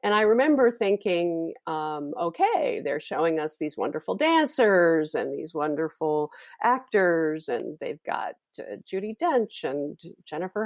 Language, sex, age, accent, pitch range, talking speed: English, female, 50-69, American, 160-215 Hz, 135 wpm